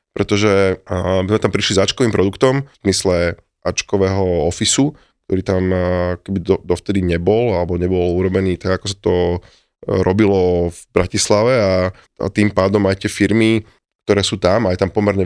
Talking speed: 155 wpm